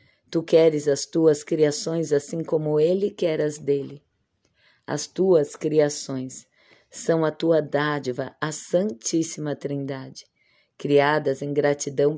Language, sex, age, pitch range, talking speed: Portuguese, female, 20-39, 145-165 Hz, 120 wpm